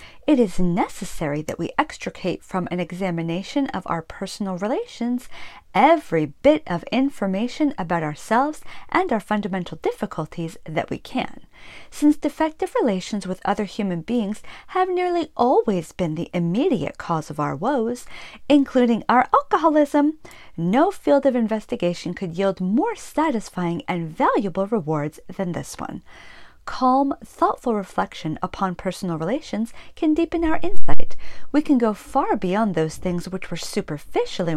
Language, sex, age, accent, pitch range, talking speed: English, female, 40-59, American, 175-275 Hz, 140 wpm